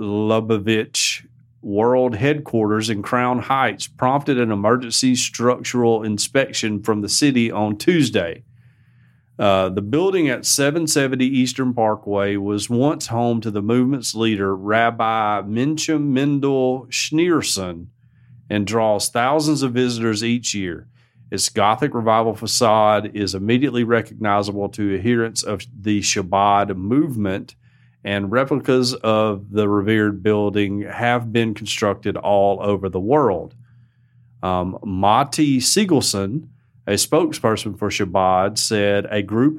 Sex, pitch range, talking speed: male, 105-125 Hz, 115 wpm